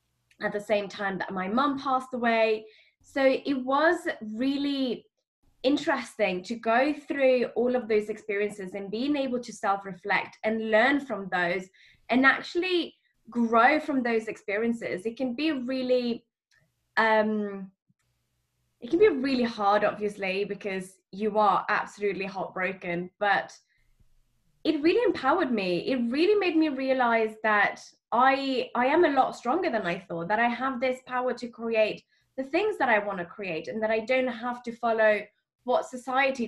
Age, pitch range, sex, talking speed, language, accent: 10-29, 210-265 Hz, female, 155 wpm, English, British